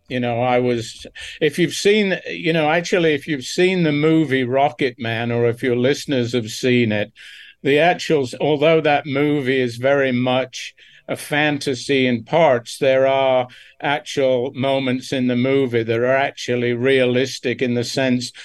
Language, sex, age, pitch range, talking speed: English, male, 50-69, 120-135 Hz, 165 wpm